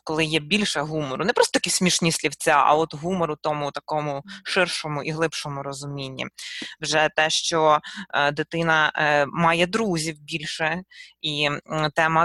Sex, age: female, 20-39